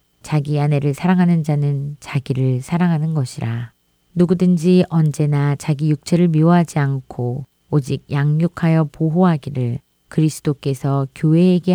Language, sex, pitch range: Korean, female, 130-170 Hz